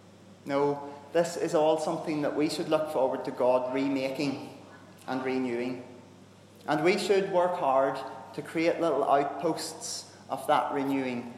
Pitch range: 110-150 Hz